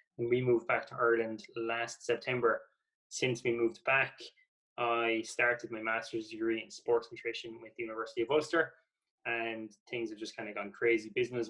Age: 20-39